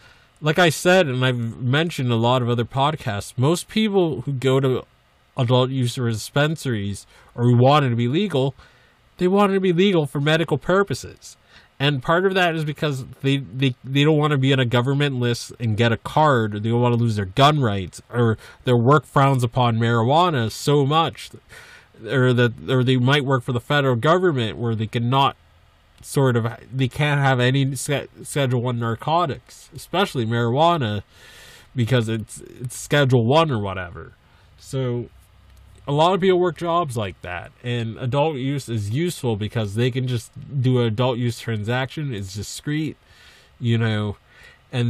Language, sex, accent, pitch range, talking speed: English, male, American, 115-140 Hz, 180 wpm